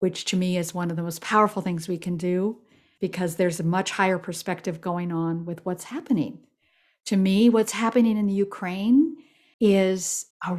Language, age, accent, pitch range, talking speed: English, 50-69, American, 180-225 Hz, 185 wpm